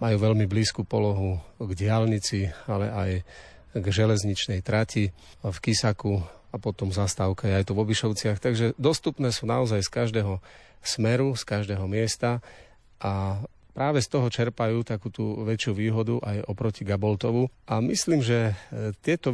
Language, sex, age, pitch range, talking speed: Slovak, male, 40-59, 105-115 Hz, 140 wpm